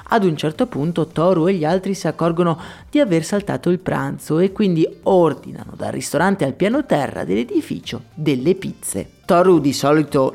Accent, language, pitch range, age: native, Italian, 150-210 Hz, 30-49